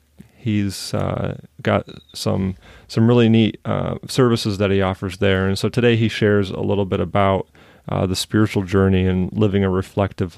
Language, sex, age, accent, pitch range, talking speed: English, male, 30-49, American, 95-115 Hz, 175 wpm